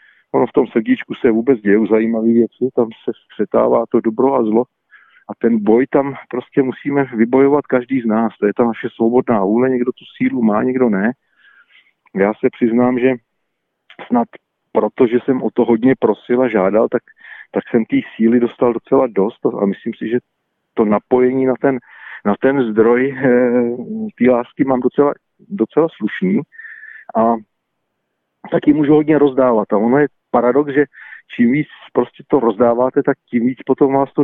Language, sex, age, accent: Czech, male, 40-59, native